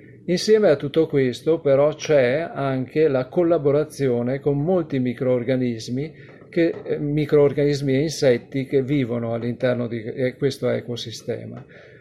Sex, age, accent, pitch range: male, 40-59, native, 125-150 Hz